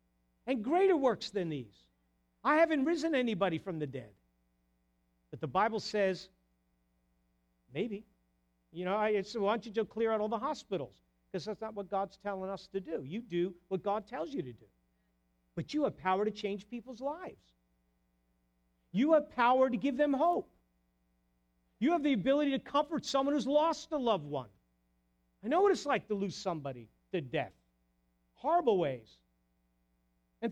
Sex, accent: male, American